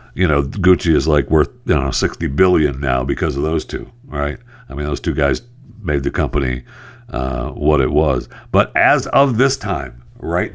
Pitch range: 75-120 Hz